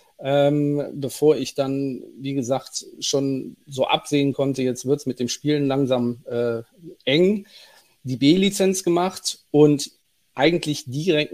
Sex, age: male, 40-59